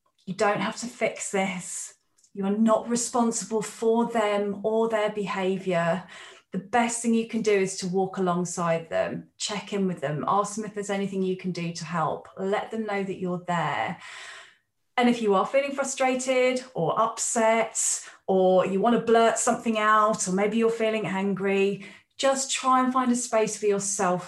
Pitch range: 185-220 Hz